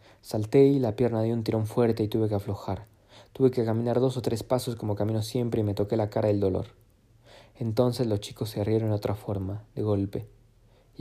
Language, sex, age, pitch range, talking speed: Spanish, male, 20-39, 105-120 Hz, 220 wpm